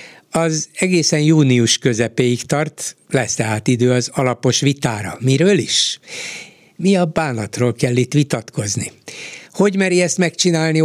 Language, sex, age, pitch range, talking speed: Hungarian, male, 60-79, 120-150 Hz, 125 wpm